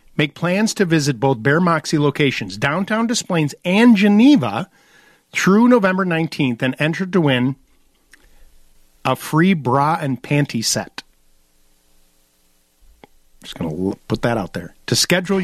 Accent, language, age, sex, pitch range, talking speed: American, English, 50-69, male, 120-165 Hz, 135 wpm